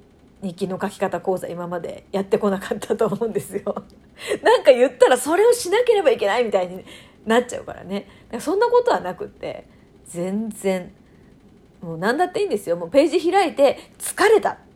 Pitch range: 190-280 Hz